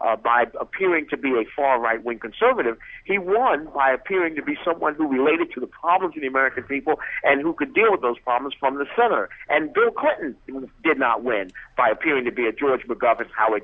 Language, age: English, 50-69